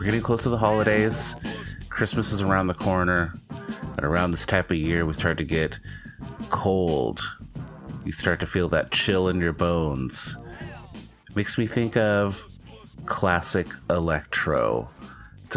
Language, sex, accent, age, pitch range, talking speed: English, male, American, 30-49, 85-110 Hz, 145 wpm